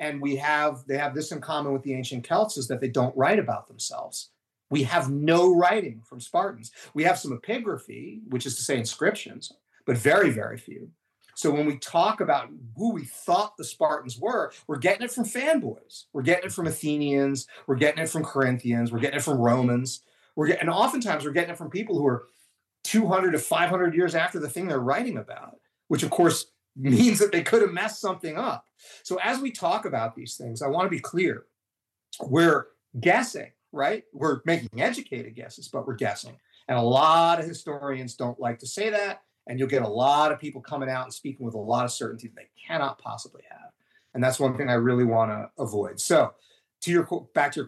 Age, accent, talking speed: 40-59, American, 210 wpm